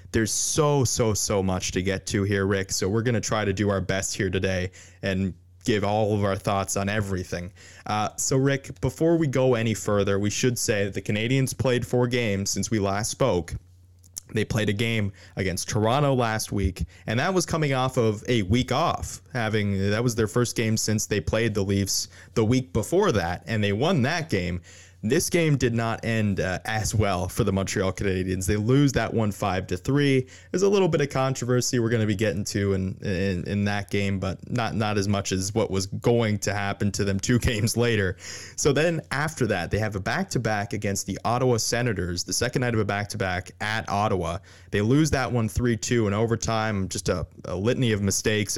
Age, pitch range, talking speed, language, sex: 20-39, 95-120 Hz, 210 wpm, English, male